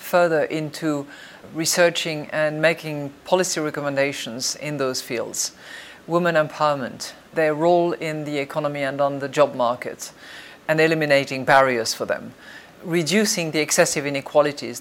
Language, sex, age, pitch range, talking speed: English, female, 50-69, 140-165 Hz, 125 wpm